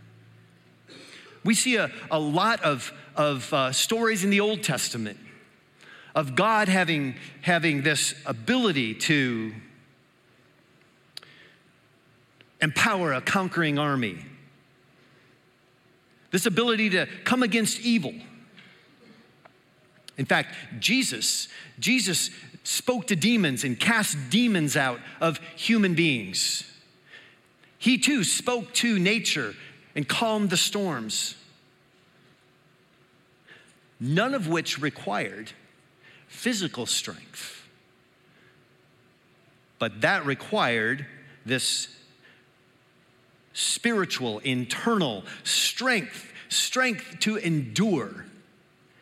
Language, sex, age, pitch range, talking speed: English, male, 50-69, 145-220 Hz, 85 wpm